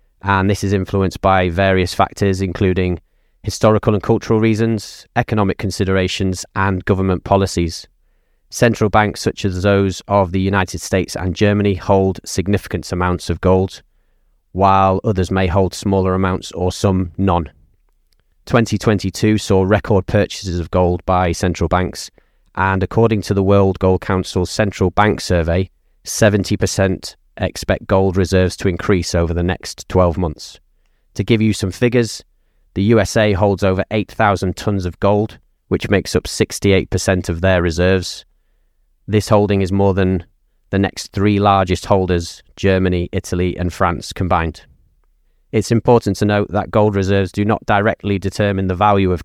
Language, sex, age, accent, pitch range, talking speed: English, male, 30-49, British, 90-100 Hz, 145 wpm